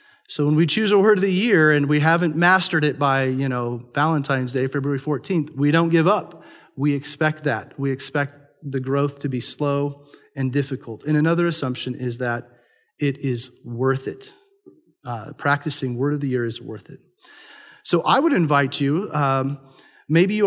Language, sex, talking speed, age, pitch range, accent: English, male, 185 wpm, 30-49, 130-170 Hz, American